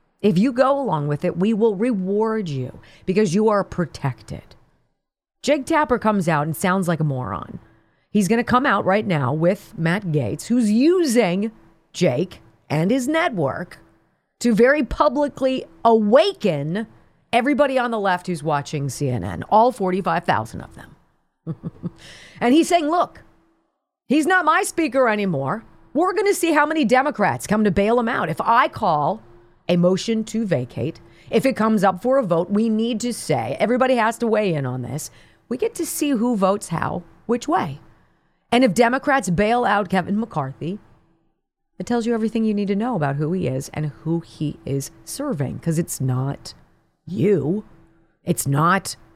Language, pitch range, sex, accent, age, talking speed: English, 155-235 Hz, female, American, 40-59, 170 wpm